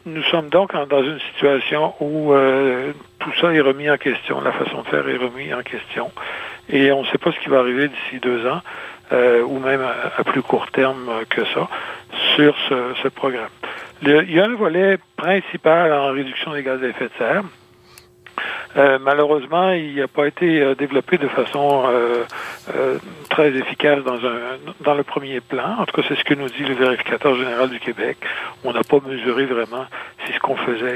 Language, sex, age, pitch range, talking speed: French, male, 60-79, 125-150 Hz, 200 wpm